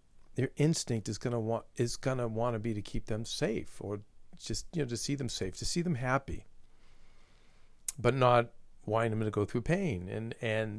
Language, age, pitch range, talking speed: English, 50-69, 100-120 Hz, 195 wpm